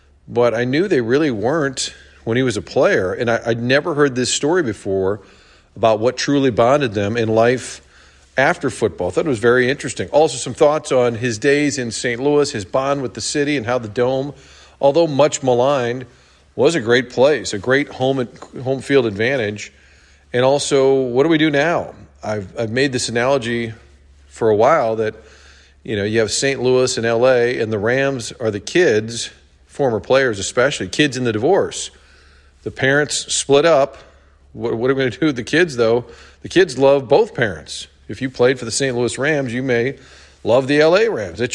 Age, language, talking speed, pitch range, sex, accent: 40-59, English, 200 wpm, 105-135 Hz, male, American